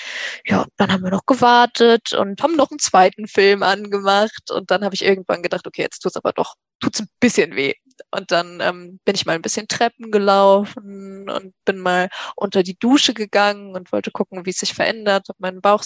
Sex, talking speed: female, 210 wpm